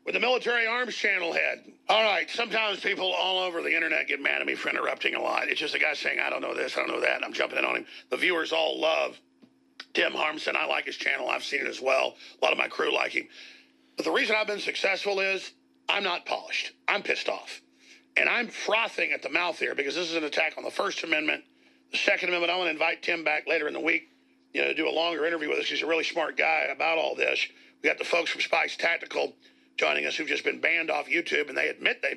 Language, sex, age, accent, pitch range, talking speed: English, male, 50-69, American, 180-250 Hz, 265 wpm